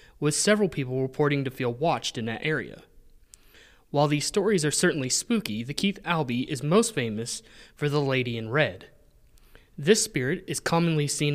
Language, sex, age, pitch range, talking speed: English, male, 20-39, 125-155 Hz, 170 wpm